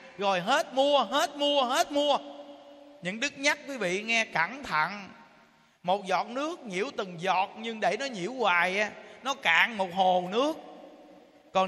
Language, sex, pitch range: Vietnamese, male, 200-280 Hz